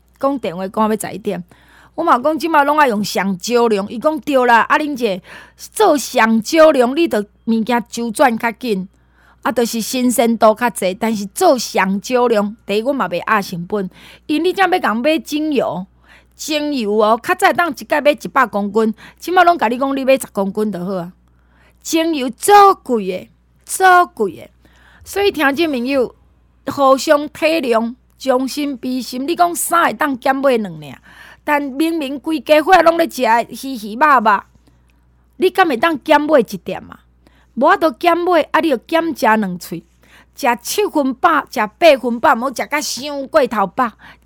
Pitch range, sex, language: 220-310 Hz, female, Chinese